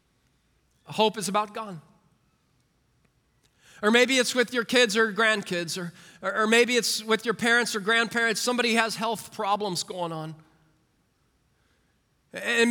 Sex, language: male, English